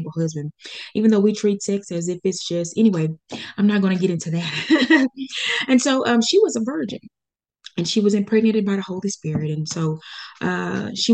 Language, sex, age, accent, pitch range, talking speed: English, female, 20-39, American, 165-205 Hz, 200 wpm